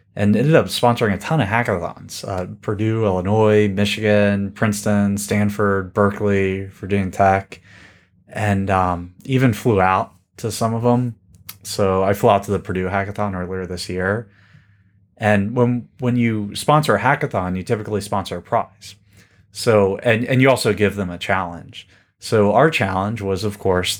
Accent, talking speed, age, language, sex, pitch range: American, 160 wpm, 20-39, English, male, 95-105 Hz